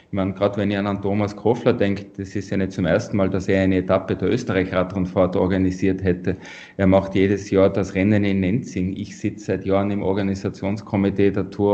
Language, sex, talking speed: German, male, 195 wpm